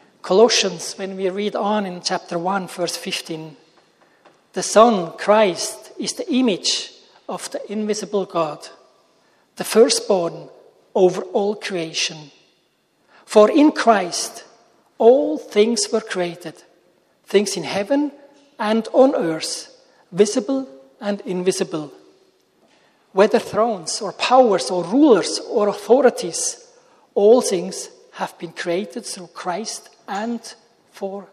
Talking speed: 115 wpm